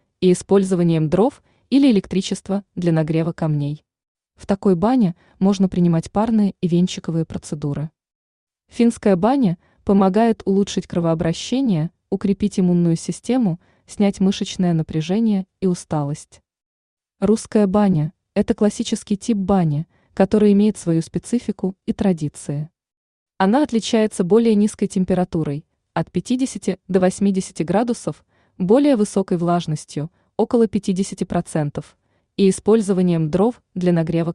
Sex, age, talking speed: female, 20-39, 110 wpm